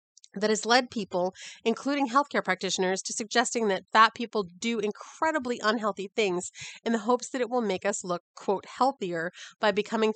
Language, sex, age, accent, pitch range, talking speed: English, female, 30-49, American, 185-245 Hz, 170 wpm